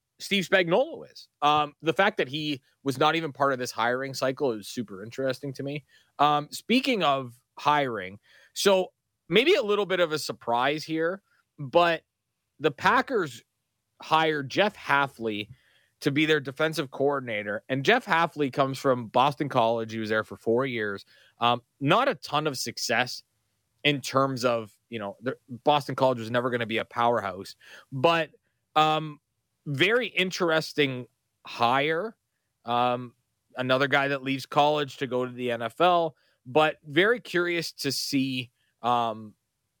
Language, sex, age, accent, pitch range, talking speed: English, male, 30-49, American, 115-150 Hz, 155 wpm